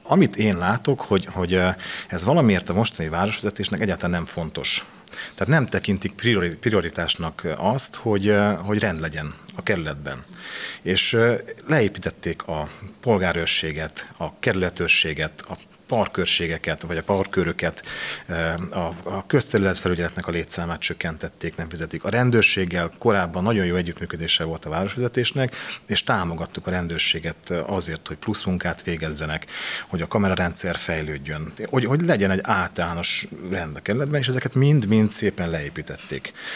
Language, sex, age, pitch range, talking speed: Hungarian, male, 40-59, 85-105 Hz, 125 wpm